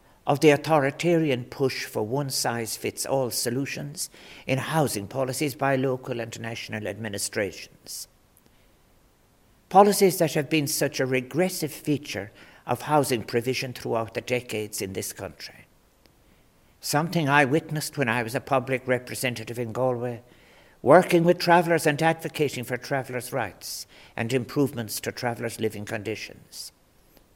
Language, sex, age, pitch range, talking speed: English, male, 60-79, 120-160 Hz, 130 wpm